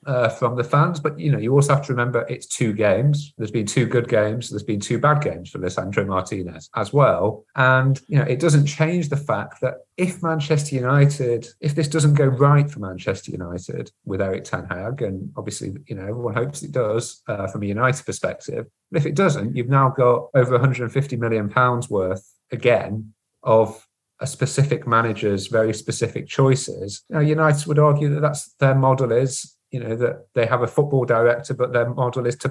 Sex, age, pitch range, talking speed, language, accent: male, 30-49, 110-140 Hz, 200 wpm, English, British